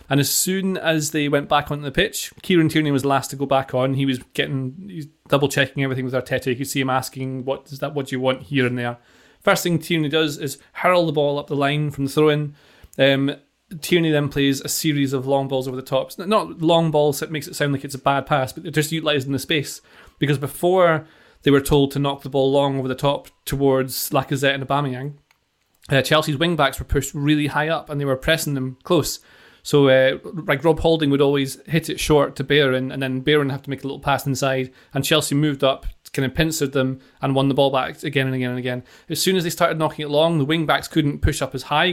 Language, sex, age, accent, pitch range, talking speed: English, male, 30-49, British, 135-150 Hz, 250 wpm